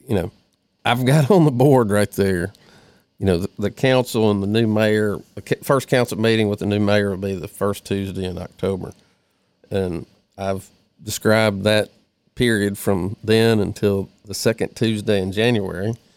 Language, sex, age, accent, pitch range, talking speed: English, male, 50-69, American, 100-120 Hz, 170 wpm